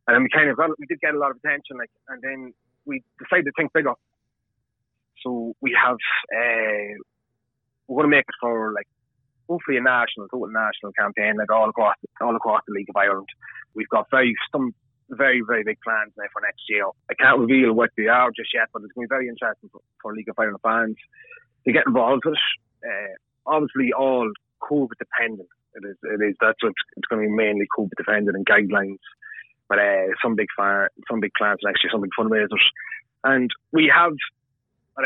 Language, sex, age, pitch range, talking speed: English, male, 30-49, 110-135 Hz, 210 wpm